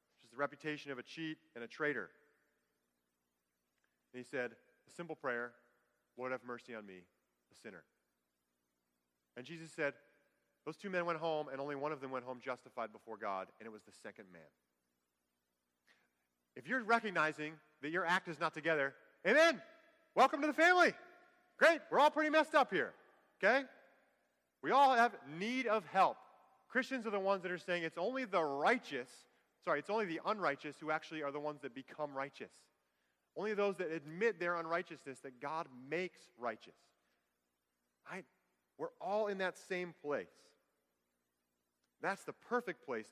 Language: English